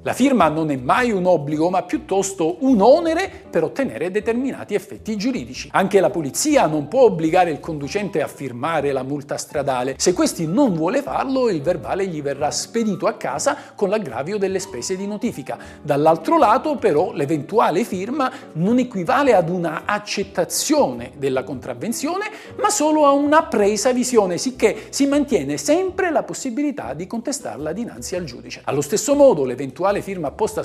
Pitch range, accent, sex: 170-275 Hz, native, male